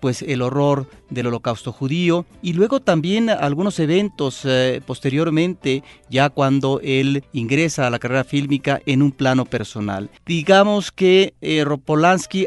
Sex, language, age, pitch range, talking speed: male, Spanish, 40-59, 135-165 Hz, 140 wpm